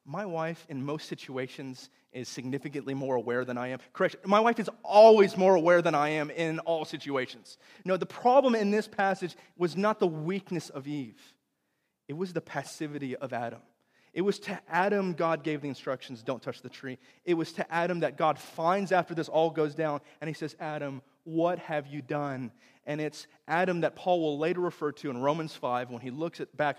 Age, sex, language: 30-49, male, English